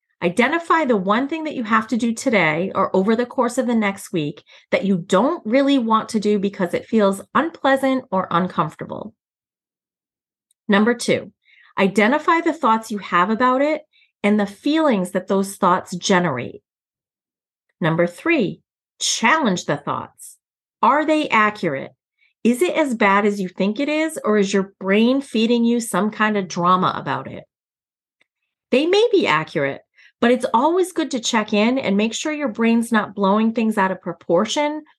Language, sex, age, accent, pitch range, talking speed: English, female, 30-49, American, 195-260 Hz, 170 wpm